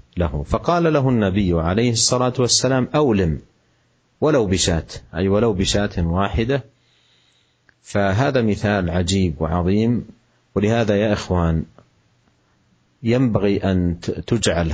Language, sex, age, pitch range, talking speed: Indonesian, male, 40-59, 85-110 Hz, 100 wpm